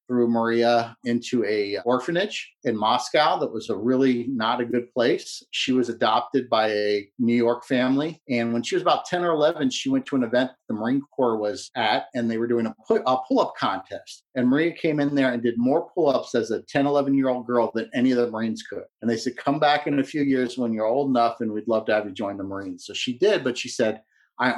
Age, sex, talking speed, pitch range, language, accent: 40-59, male, 235 wpm, 115-140 Hz, English, American